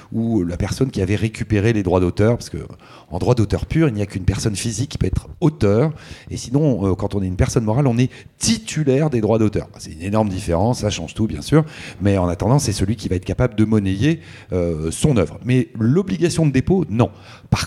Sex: male